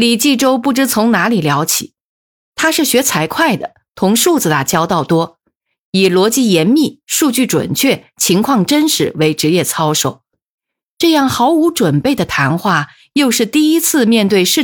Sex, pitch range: female, 165-255 Hz